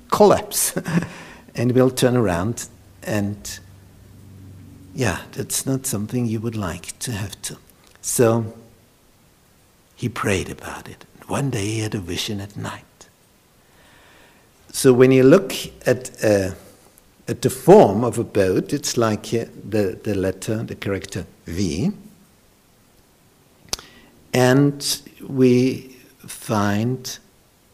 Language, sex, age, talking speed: English, male, 60-79, 115 wpm